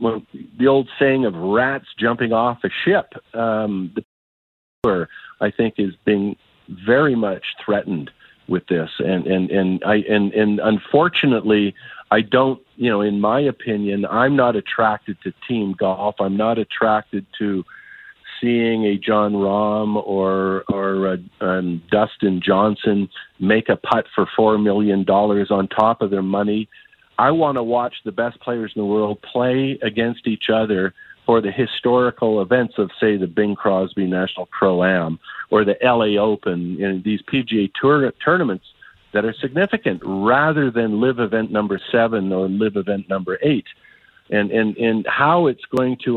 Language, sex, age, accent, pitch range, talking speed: English, male, 50-69, American, 100-125 Hz, 160 wpm